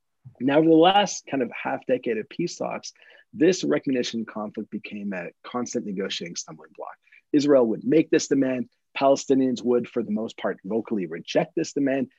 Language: English